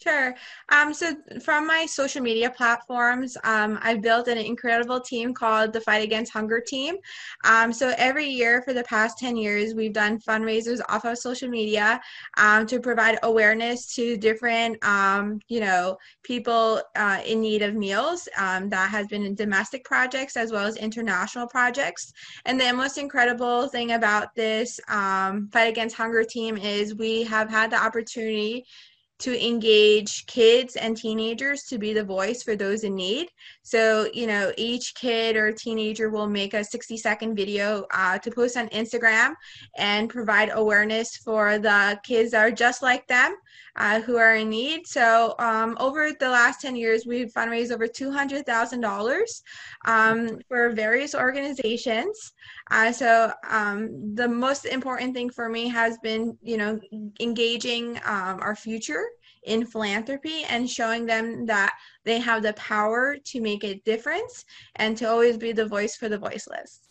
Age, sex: 20-39, female